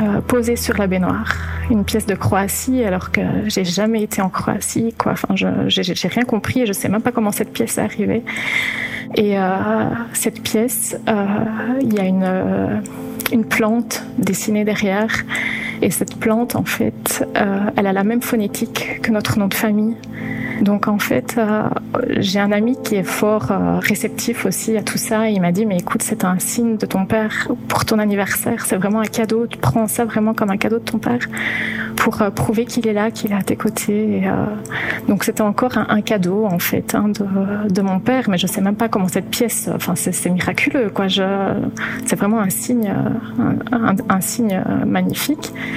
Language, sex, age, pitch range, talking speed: French, female, 30-49, 195-230 Hz, 205 wpm